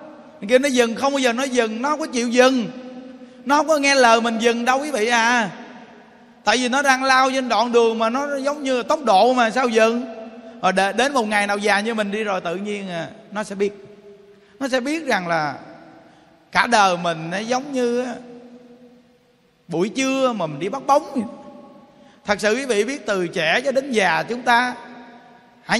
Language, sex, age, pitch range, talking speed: Vietnamese, male, 20-39, 205-255 Hz, 210 wpm